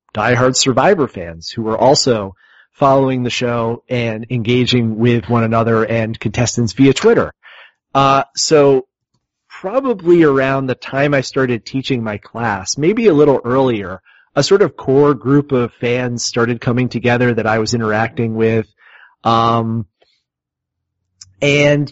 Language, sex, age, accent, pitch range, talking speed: English, male, 30-49, American, 115-135 Hz, 140 wpm